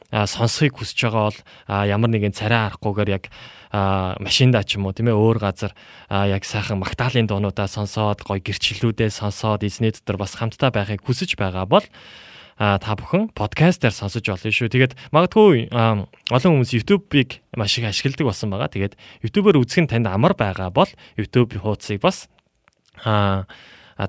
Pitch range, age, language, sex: 100-125 Hz, 20-39, Korean, male